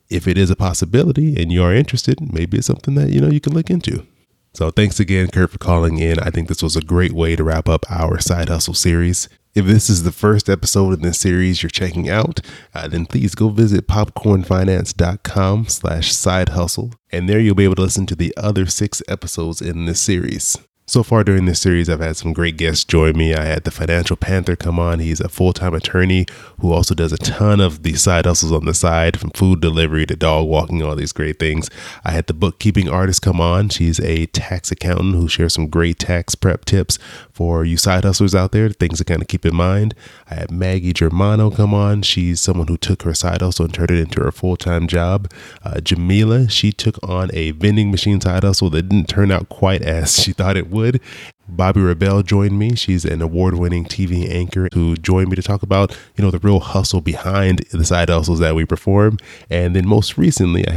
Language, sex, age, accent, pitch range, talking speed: English, male, 20-39, American, 85-100 Hz, 220 wpm